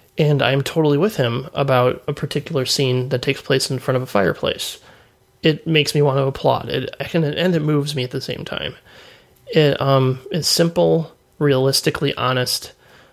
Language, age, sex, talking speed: English, 30-49, male, 185 wpm